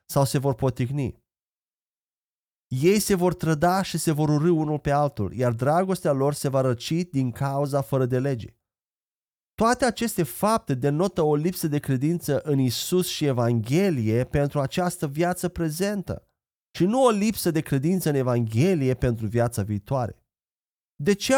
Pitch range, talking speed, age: 125-175 Hz, 155 wpm, 30-49